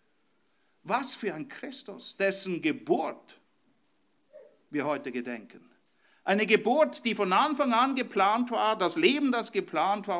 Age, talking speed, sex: 50-69, 130 wpm, male